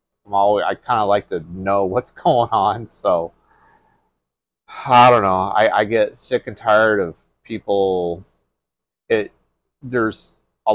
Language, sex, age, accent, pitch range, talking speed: English, male, 30-49, American, 95-110 Hz, 135 wpm